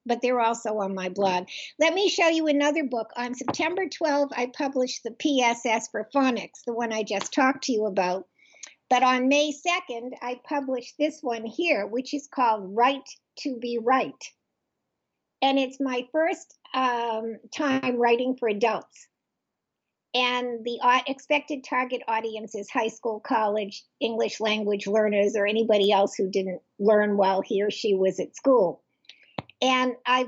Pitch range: 220-265 Hz